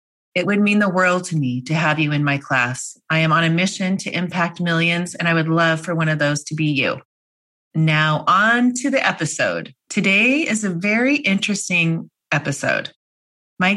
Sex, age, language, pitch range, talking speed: female, 30-49, English, 150-190 Hz, 190 wpm